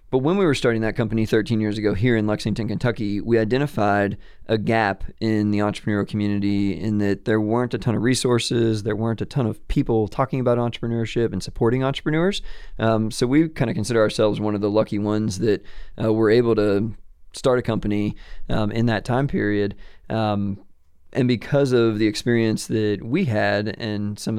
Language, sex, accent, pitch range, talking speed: English, male, American, 105-125 Hz, 190 wpm